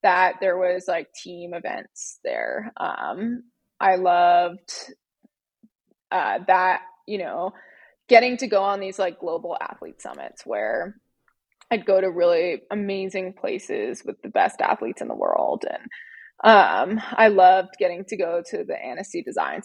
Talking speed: 145 wpm